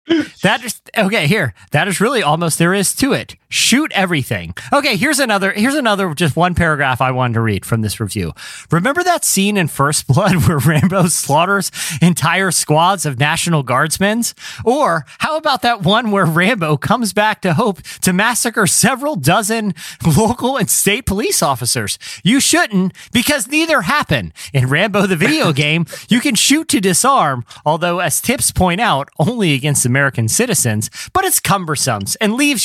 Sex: male